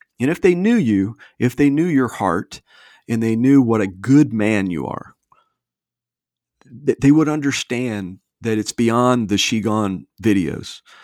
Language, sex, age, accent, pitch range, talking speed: English, male, 40-59, American, 95-125 Hz, 160 wpm